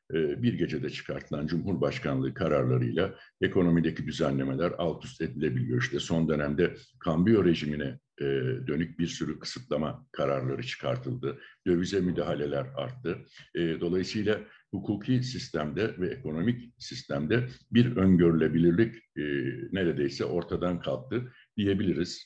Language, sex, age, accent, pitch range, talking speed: Turkish, male, 60-79, native, 75-110 Hz, 100 wpm